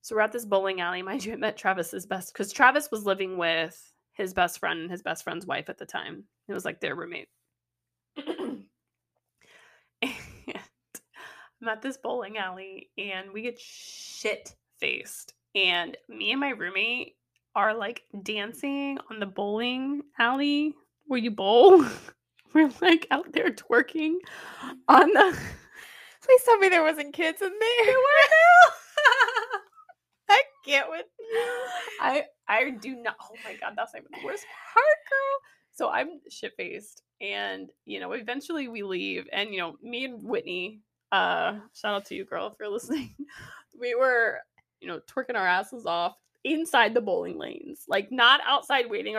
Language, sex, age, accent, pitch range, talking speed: English, female, 20-39, American, 195-320 Hz, 160 wpm